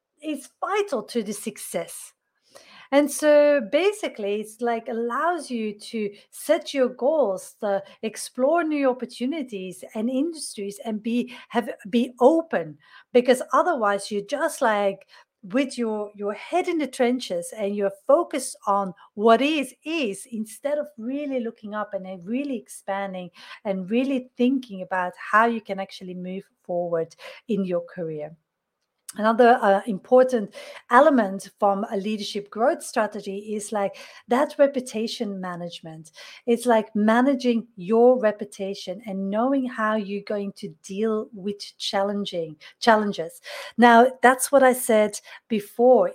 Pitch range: 200-265 Hz